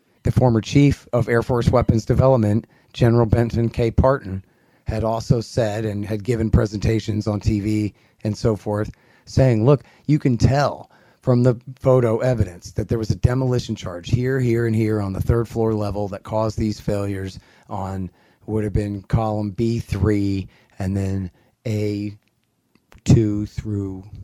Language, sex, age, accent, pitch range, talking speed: English, male, 30-49, American, 105-130 Hz, 155 wpm